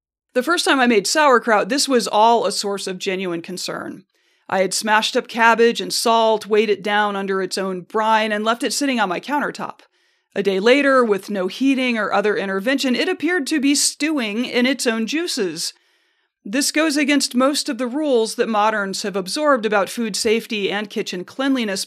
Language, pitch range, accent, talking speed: English, 190-255 Hz, American, 190 wpm